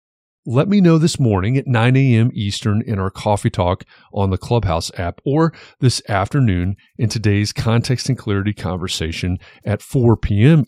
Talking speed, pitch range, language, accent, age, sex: 165 wpm, 95-130 Hz, English, American, 40-59, male